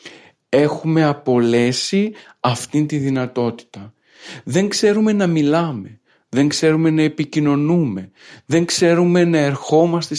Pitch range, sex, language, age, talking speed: 120-150 Hz, male, Greek, 50-69, 100 wpm